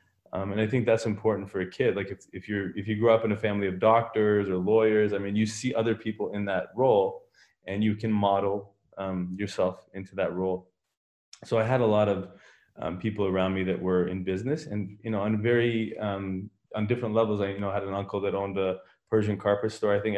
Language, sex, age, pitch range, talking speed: English, male, 20-39, 95-105 Hz, 235 wpm